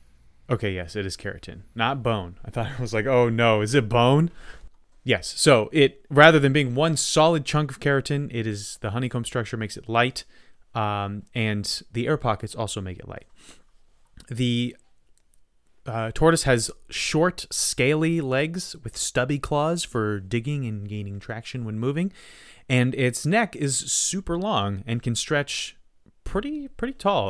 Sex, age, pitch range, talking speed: male, 30-49, 105-150 Hz, 165 wpm